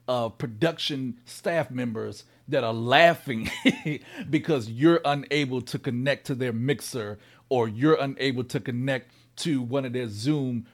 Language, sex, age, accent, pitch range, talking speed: English, male, 40-59, American, 130-170 Hz, 140 wpm